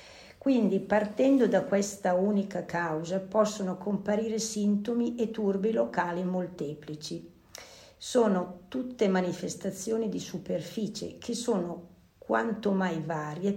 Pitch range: 175-215 Hz